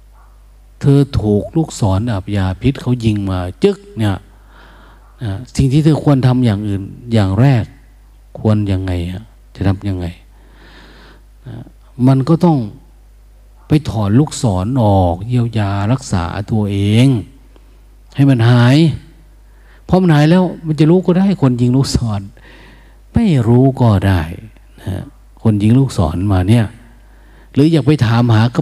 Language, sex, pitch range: Thai, male, 95-130 Hz